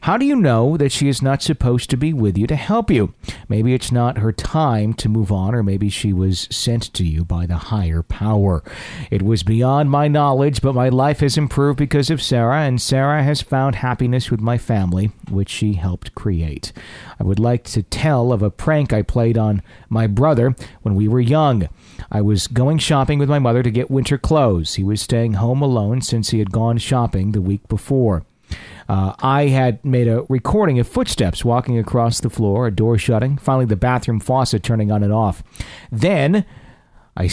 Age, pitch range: 40-59, 105-135 Hz